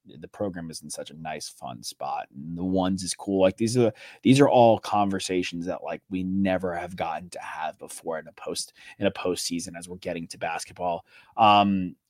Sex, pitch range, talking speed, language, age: male, 90-105 Hz, 210 wpm, English, 20-39